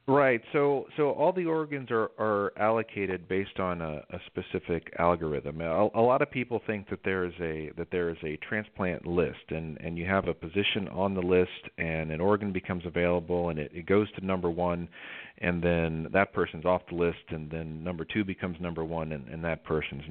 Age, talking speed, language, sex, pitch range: 40-59, 210 wpm, English, male, 85-105 Hz